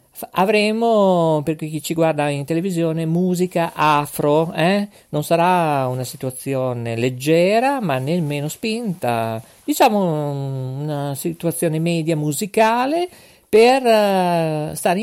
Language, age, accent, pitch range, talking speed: Italian, 50-69, native, 140-200 Hz, 100 wpm